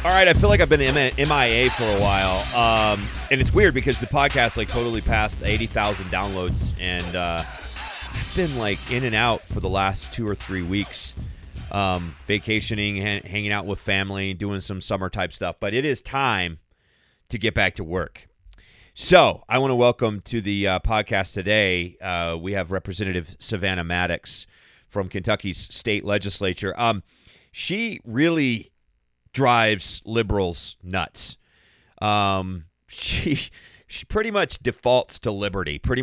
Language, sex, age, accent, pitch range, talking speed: English, male, 30-49, American, 90-110 Hz, 155 wpm